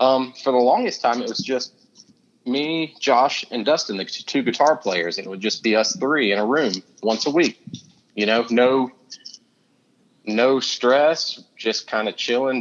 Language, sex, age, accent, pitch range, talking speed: English, male, 30-49, American, 105-130 Hz, 180 wpm